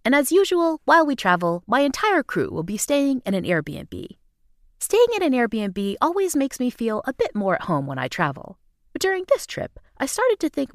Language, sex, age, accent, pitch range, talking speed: English, female, 30-49, American, 200-330 Hz, 220 wpm